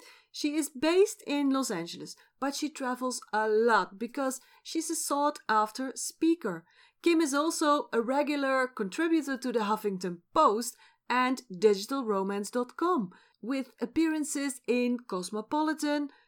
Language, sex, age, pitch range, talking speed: Dutch, female, 40-59, 220-300 Hz, 120 wpm